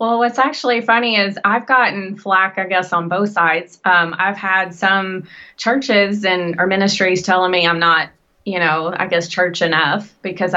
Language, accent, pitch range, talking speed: English, American, 170-195 Hz, 180 wpm